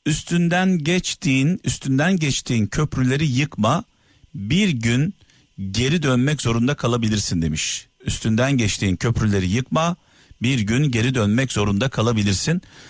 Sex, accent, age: male, native, 50-69